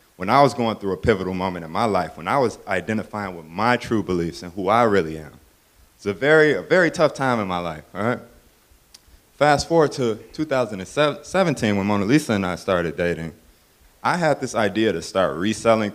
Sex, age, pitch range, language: male, 20-39, 90-120 Hz, English